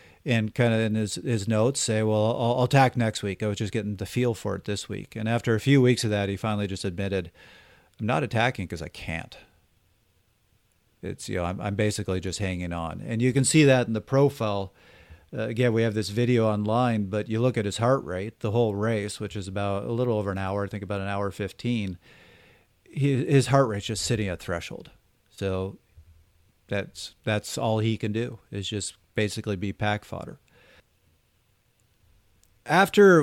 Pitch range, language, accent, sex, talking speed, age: 100-120 Hz, English, American, male, 200 wpm, 40-59